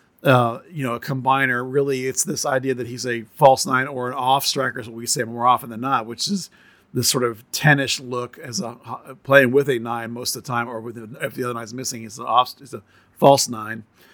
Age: 40-59